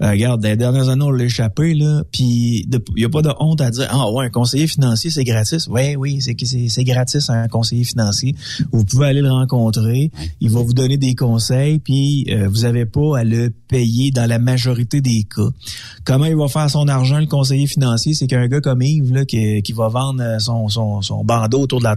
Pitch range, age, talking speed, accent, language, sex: 120-150 Hz, 30-49, 235 wpm, Canadian, French, male